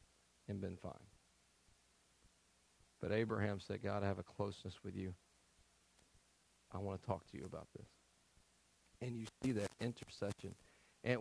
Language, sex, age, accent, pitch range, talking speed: English, male, 40-59, American, 105-145 Hz, 145 wpm